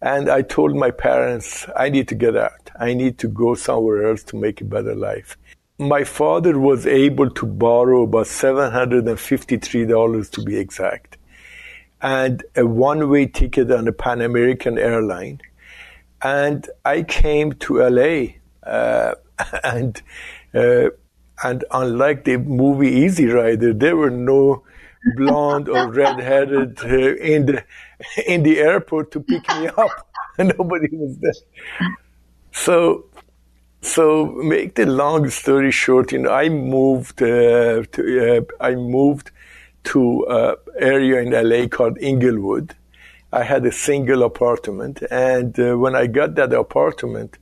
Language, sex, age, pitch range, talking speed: English, male, 50-69, 115-145 Hz, 135 wpm